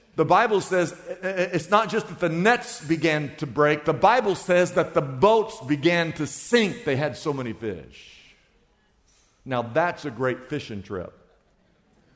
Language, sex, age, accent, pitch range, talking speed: English, male, 50-69, American, 125-190 Hz, 160 wpm